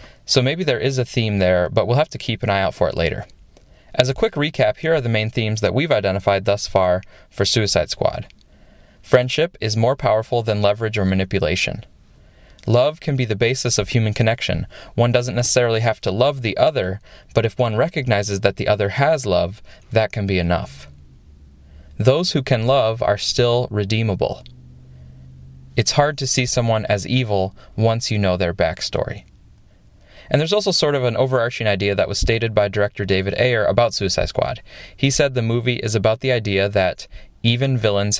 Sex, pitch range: male, 100-125 Hz